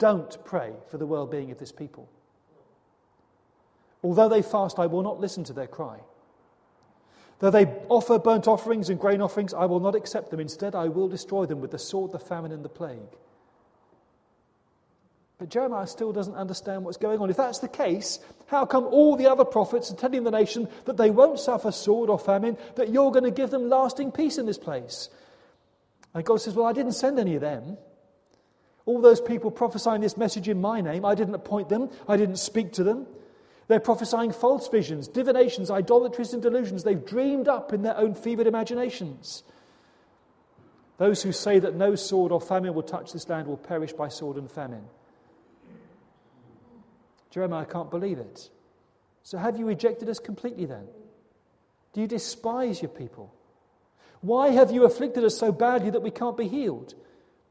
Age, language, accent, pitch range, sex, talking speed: 40-59, English, British, 180-240 Hz, male, 185 wpm